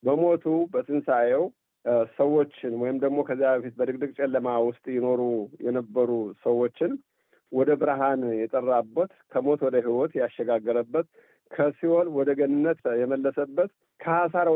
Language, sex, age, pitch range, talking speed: Amharic, male, 50-69, 120-145 Hz, 100 wpm